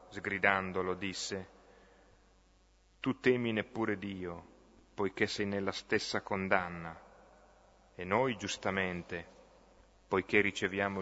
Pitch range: 90-105 Hz